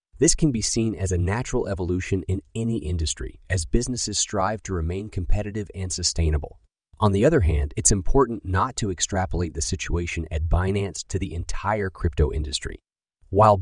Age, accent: 30-49, American